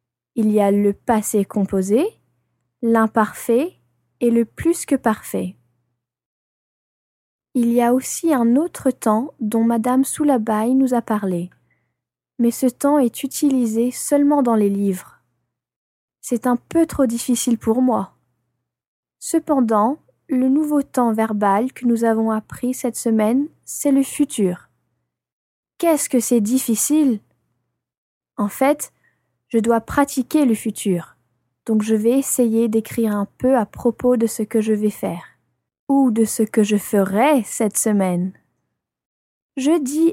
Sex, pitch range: female, 215-265 Hz